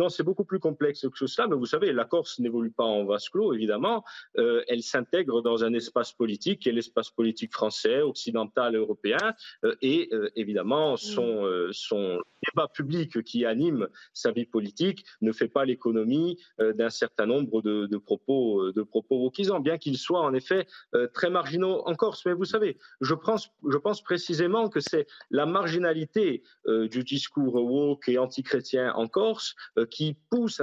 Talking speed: 180 wpm